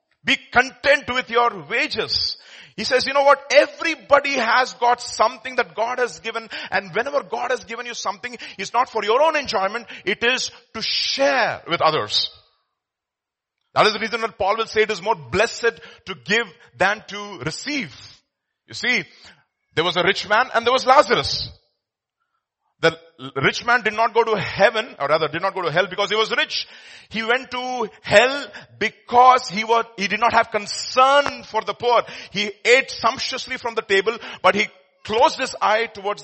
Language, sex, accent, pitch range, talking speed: English, male, Indian, 185-240 Hz, 180 wpm